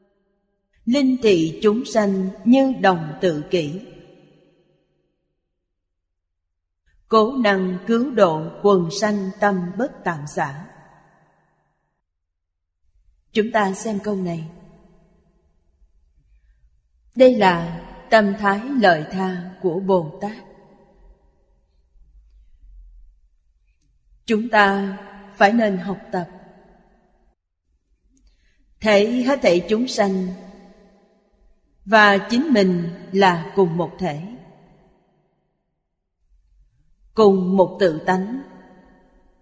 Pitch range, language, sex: 140-205 Hz, Vietnamese, female